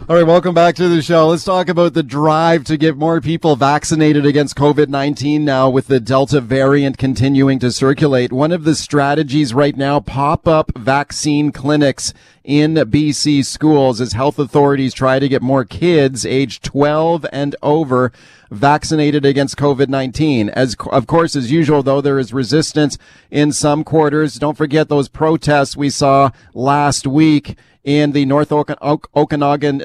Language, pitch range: English, 135-150 Hz